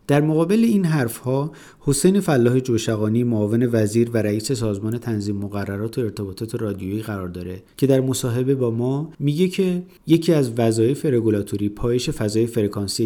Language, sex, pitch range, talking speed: Persian, male, 105-135 Hz, 150 wpm